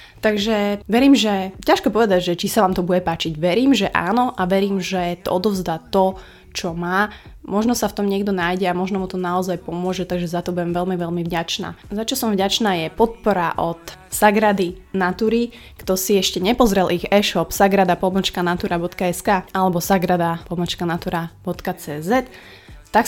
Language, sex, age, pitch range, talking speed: Slovak, female, 20-39, 175-205 Hz, 160 wpm